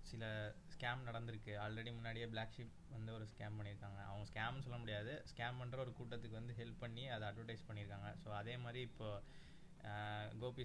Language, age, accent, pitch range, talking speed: Tamil, 20-39, native, 110-125 Hz, 170 wpm